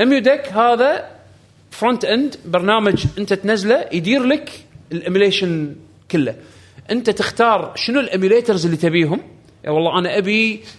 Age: 30-49